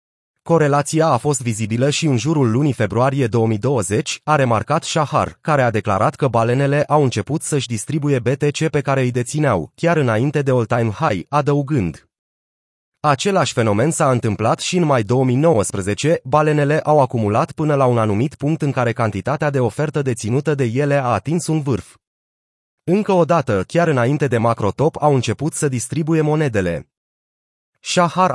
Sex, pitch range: male, 115-150 Hz